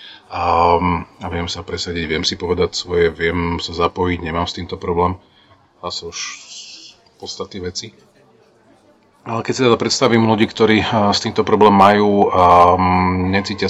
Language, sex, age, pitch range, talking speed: Slovak, male, 30-49, 90-110 Hz, 140 wpm